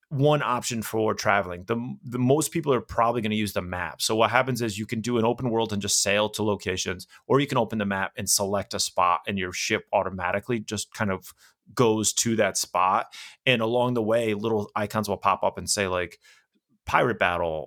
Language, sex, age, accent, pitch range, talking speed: English, male, 30-49, American, 100-125 Hz, 220 wpm